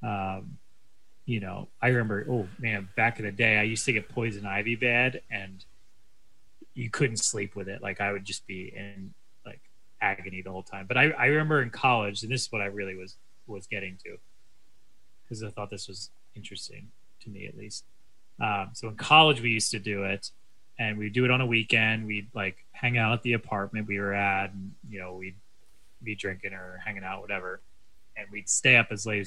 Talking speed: 210 wpm